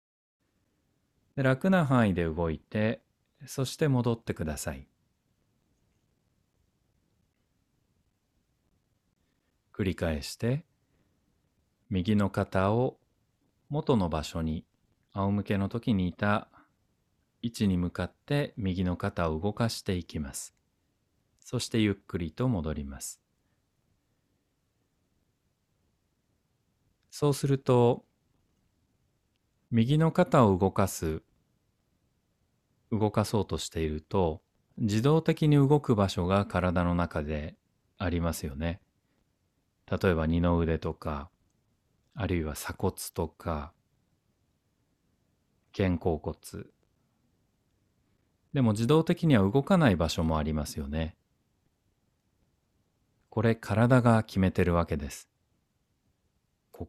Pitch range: 85-120 Hz